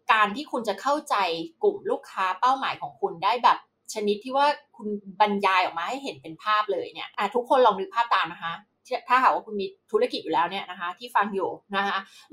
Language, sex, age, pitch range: Thai, female, 20-39, 200-320 Hz